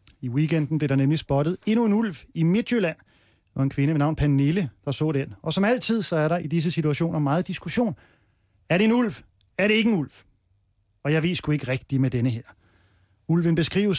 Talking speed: 215 wpm